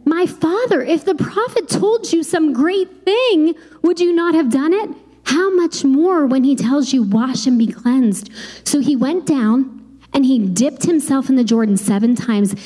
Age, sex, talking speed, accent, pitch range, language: 30-49, female, 190 wpm, American, 225-300 Hz, English